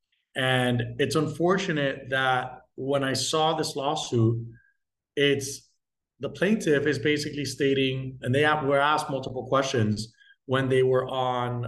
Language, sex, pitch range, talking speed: English, male, 125-155 Hz, 135 wpm